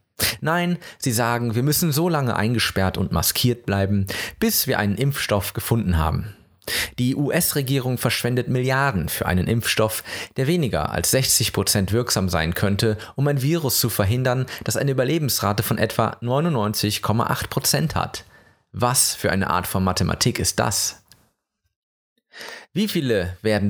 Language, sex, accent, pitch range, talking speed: German, male, German, 100-130 Hz, 135 wpm